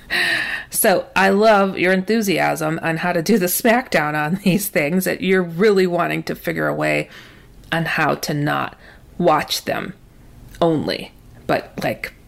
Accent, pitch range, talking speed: American, 160-225 Hz, 150 wpm